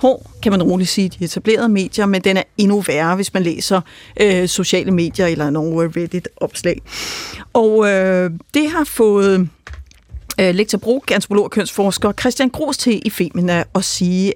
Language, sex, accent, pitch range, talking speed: Danish, female, native, 185-245 Hz, 170 wpm